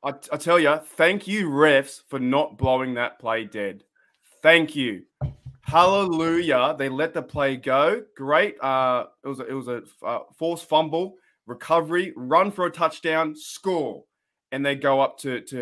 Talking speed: 165 wpm